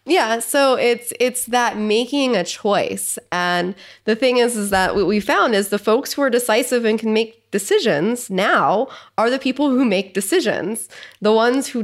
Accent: American